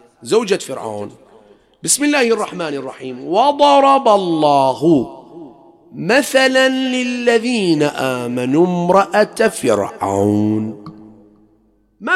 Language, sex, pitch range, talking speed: English, male, 180-260 Hz, 65 wpm